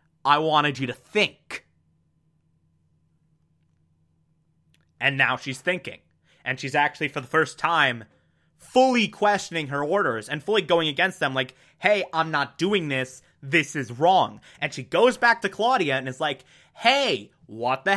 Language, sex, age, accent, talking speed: English, male, 30-49, American, 155 wpm